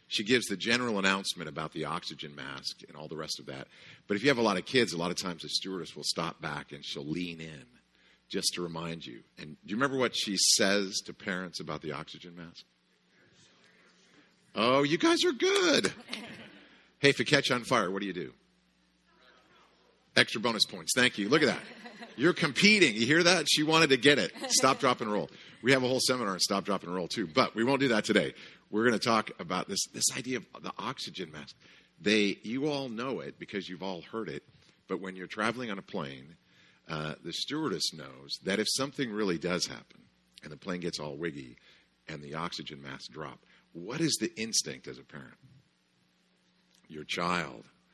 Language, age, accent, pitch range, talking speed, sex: English, 50-69, American, 80-130 Hz, 210 wpm, male